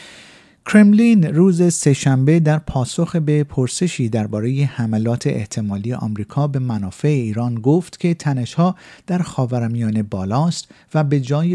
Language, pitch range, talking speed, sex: Persian, 110-155 Hz, 120 wpm, male